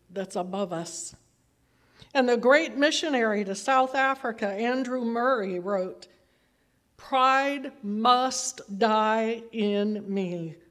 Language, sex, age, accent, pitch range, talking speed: English, female, 60-79, American, 190-265 Hz, 100 wpm